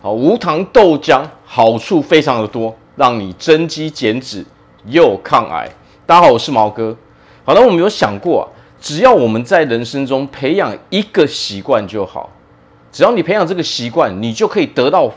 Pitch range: 100-140 Hz